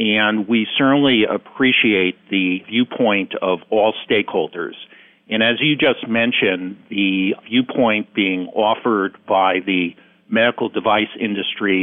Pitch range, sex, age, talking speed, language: 100-115 Hz, male, 50-69, 115 wpm, English